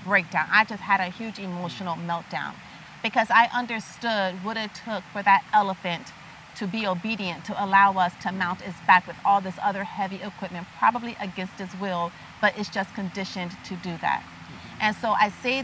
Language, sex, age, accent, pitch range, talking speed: English, female, 40-59, American, 185-220 Hz, 185 wpm